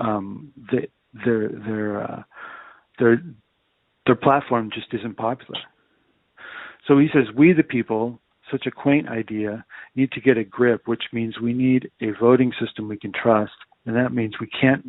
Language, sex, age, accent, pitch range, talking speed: English, male, 40-59, American, 110-130 Hz, 165 wpm